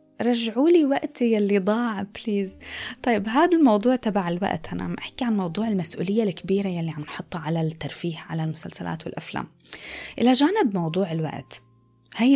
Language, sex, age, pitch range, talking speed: Arabic, female, 20-39, 180-245 Hz, 150 wpm